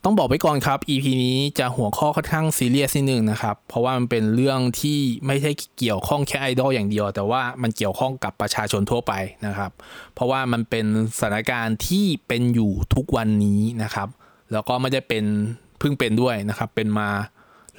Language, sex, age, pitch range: Thai, male, 20-39, 105-135 Hz